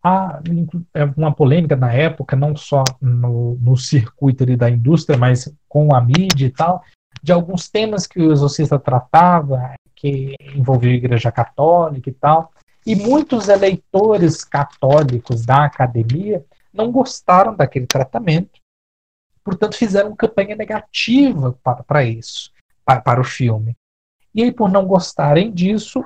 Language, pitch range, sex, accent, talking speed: Portuguese, 130-175 Hz, male, Brazilian, 145 wpm